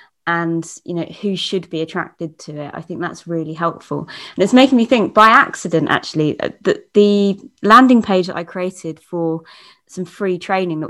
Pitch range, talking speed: 170-220 Hz, 185 wpm